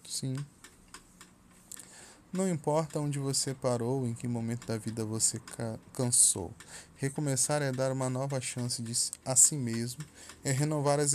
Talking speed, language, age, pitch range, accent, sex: 145 wpm, Portuguese, 10-29, 120-150 Hz, Brazilian, male